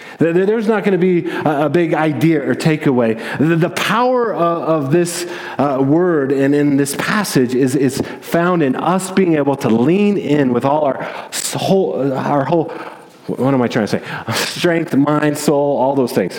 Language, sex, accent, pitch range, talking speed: English, male, American, 150-190 Hz, 170 wpm